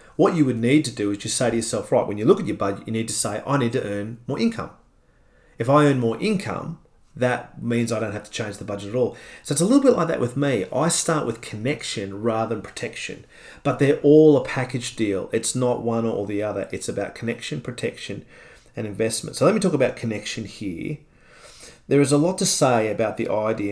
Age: 40-59